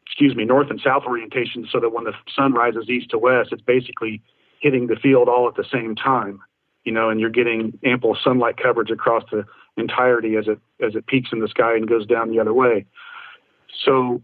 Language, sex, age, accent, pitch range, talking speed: English, male, 40-59, American, 115-130 Hz, 215 wpm